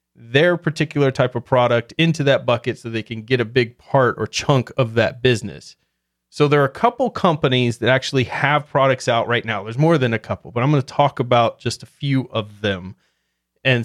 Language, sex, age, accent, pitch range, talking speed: English, male, 30-49, American, 115-135 Hz, 210 wpm